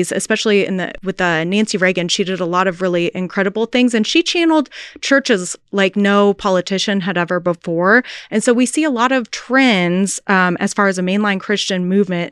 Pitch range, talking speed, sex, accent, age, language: 180-225 Hz, 200 wpm, female, American, 20-39, English